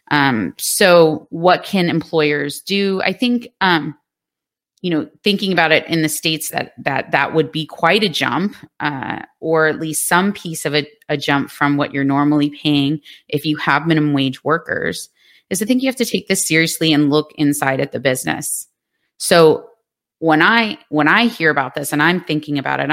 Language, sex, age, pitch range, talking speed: English, female, 30-49, 145-175 Hz, 195 wpm